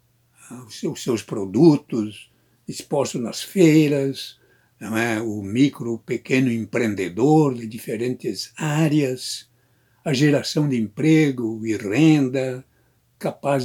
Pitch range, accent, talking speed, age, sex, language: 110-150 Hz, Brazilian, 95 wpm, 60-79, male, Portuguese